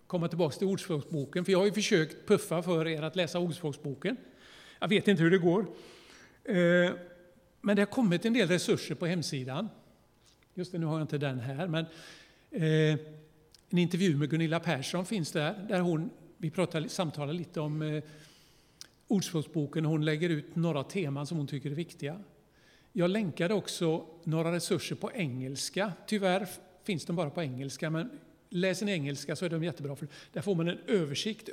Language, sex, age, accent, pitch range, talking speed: Swedish, male, 50-69, native, 155-185 Hz, 170 wpm